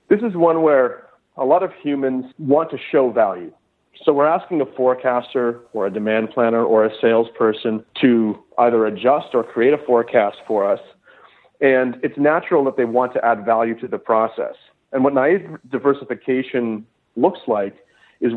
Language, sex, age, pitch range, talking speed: English, male, 40-59, 120-150 Hz, 170 wpm